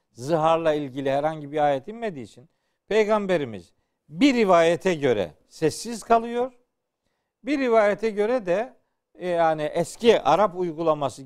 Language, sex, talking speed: Turkish, male, 115 wpm